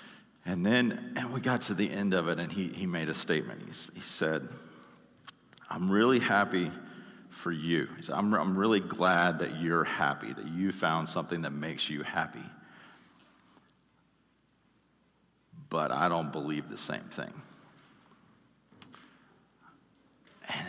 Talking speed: 140 wpm